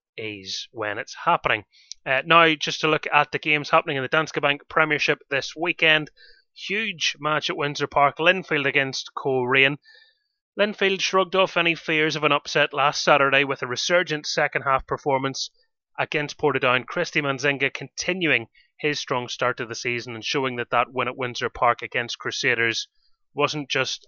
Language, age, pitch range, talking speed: English, 30-49, 125-160 Hz, 165 wpm